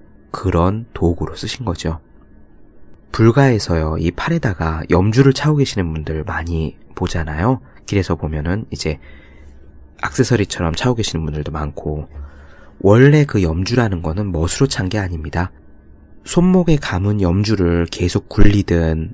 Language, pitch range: Korean, 80-115 Hz